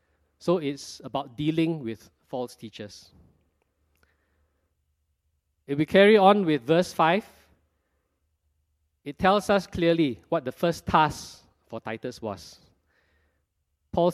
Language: English